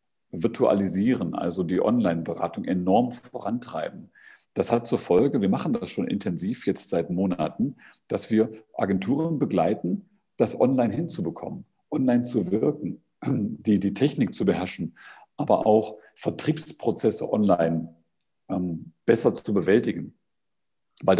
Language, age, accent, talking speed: German, 50-69, German, 120 wpm